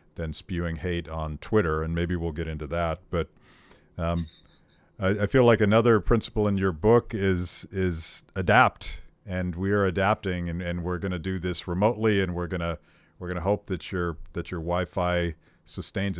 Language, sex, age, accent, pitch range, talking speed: English, male, 50-69, American, 85-100 Hz, 180 wpm